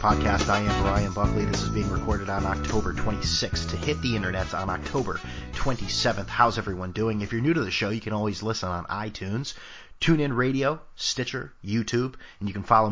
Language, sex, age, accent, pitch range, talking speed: English, male, 30-49, American, 95-115 Hz, 195 wpm